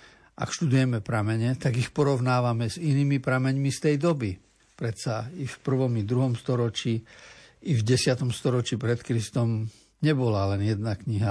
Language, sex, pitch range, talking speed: Slovak, male, 110-135 Hz, 160 wpm